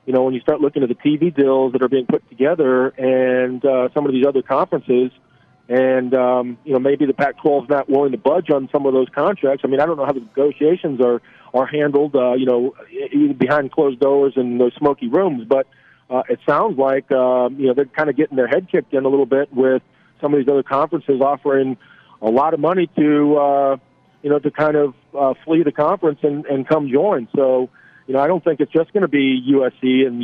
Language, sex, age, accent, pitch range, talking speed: English, male, 40-59, American, 130-150 Hz, 235 wpm